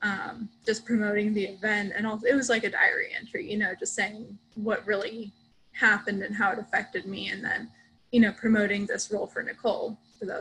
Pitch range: 200-225 Hz